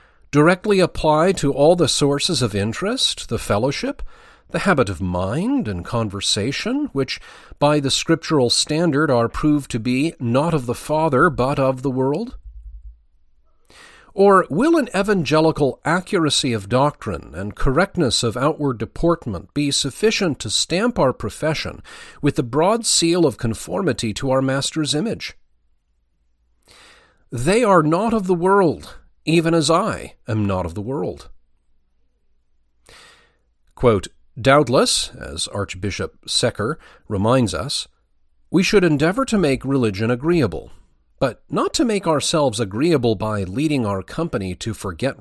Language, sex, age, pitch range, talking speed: English, male, 40-59, 100-165 Hz, 135 wpm